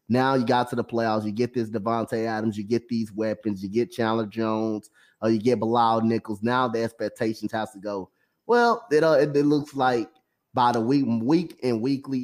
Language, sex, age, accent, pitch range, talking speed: English, male, 20-39, American, 110-135 Hz, 210 wpm